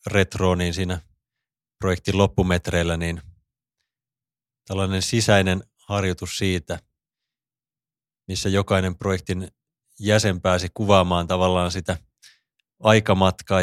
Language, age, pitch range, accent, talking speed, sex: Finnish, 30-49, 90-100 Hz, native, 85 wpm, male